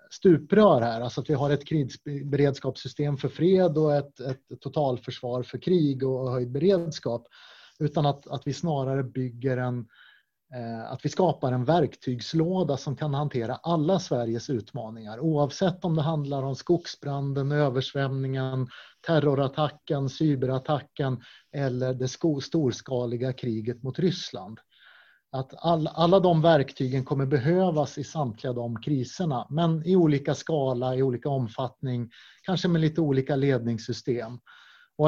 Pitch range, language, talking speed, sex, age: 130-160 Hz, Swedish, 130 wpm, male, 30-49